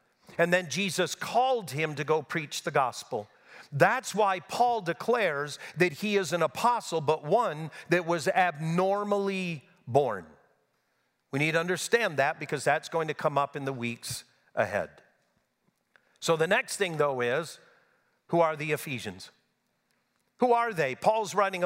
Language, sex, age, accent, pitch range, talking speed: English, male, 50-69, American, 160-205 Hz, 150 wpm